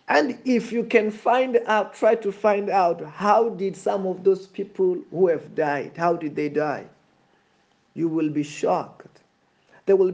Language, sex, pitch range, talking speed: English, male, 195-250 Hz, 170 wpm